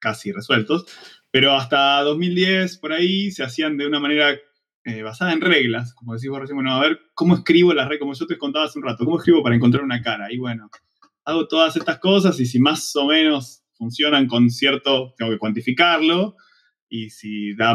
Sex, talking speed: male, 205 wpm